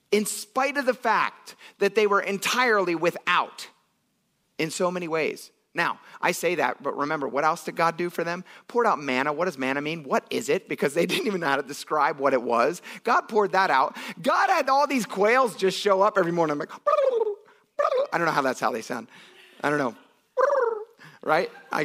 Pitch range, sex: 155-225 Hz, male